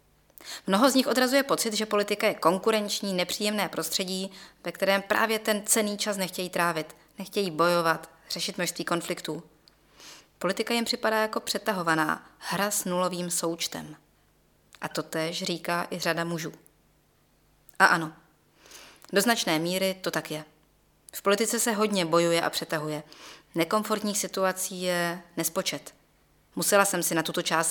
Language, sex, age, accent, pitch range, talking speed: Czech, female, 20-39, native, 165-205 Hz, 140 wpm